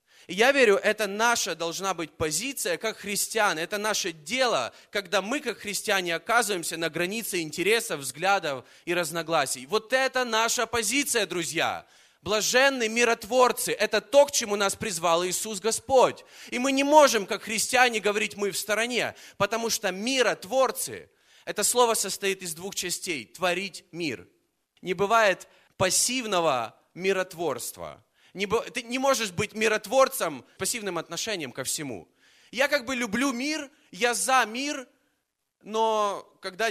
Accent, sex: native, male